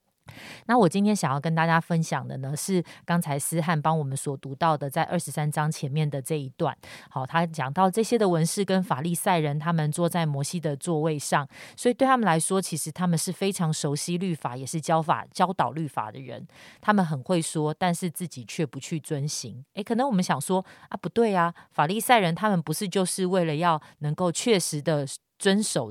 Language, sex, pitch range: Chinese, female, 150-185 Hz